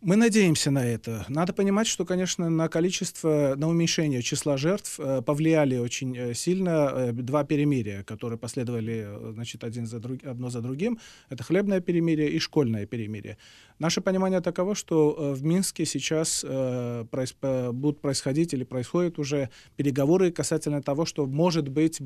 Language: Ukrainian